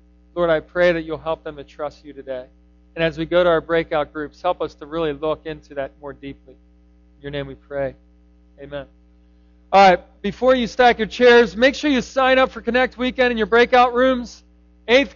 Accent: American